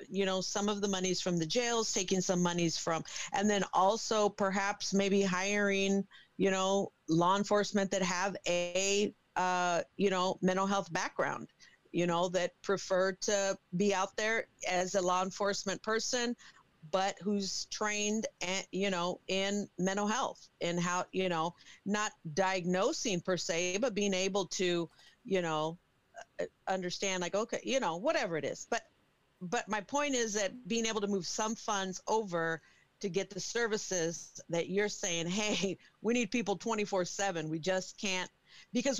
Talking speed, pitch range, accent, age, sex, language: 160 wpm, 180-215 Hz, American, 40-59, female, English